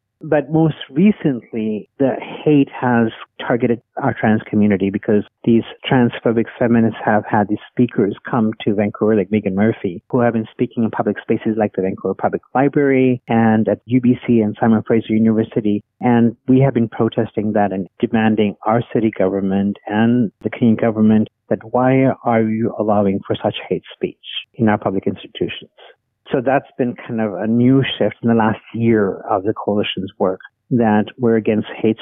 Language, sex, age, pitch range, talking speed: English, male, 50-69, 110-125 Hz, 170 wpm